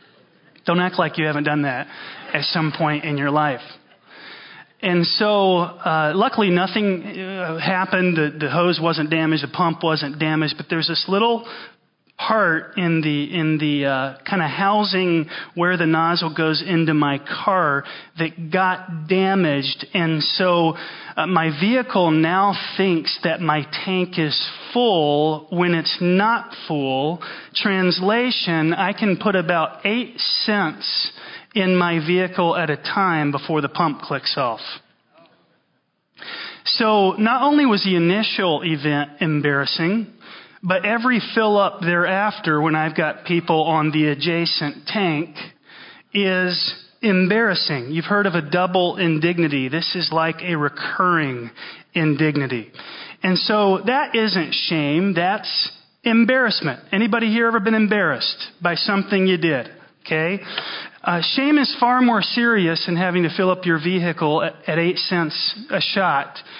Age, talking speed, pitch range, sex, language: 30-49, 140 wpm, 160-195 Hz, male, English